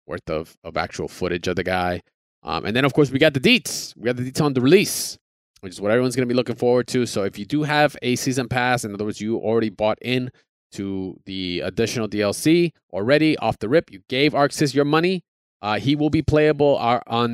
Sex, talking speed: male, 235 wpm